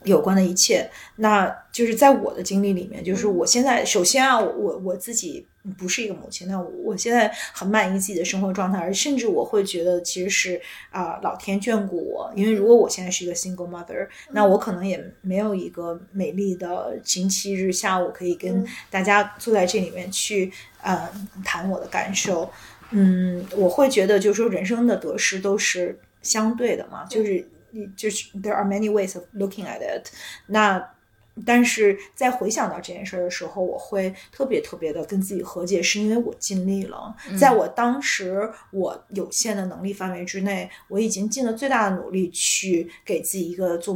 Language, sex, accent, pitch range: Chinese, female, native, 185-220 Hz